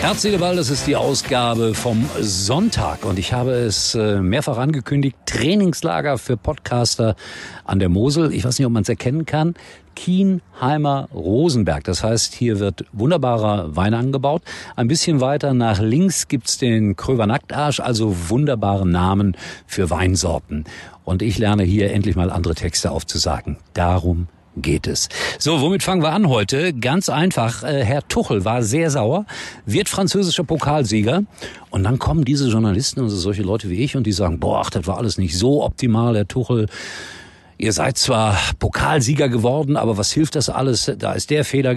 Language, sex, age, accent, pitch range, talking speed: German, male, 50-69, German, 100-140 Hz, 170 wpm